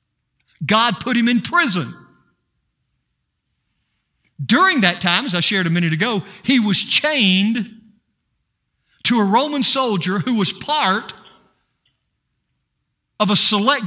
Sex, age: male, 50-69